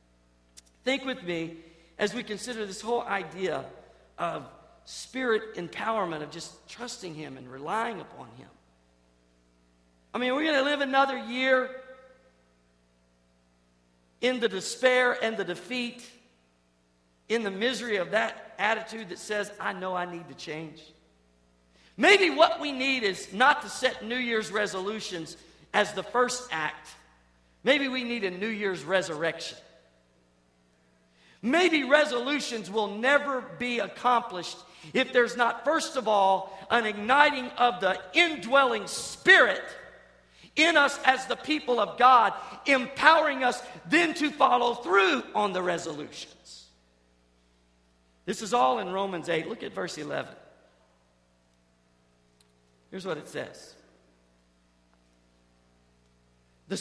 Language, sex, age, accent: English, male, 50-69, American